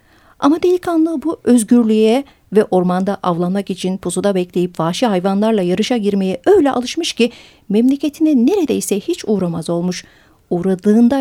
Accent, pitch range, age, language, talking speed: native, 180-235 Hz, 50-69, Turkish, 125 wpm